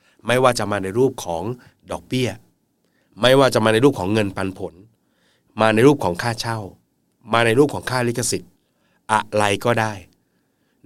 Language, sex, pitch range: Thai, male, 95-120 Hz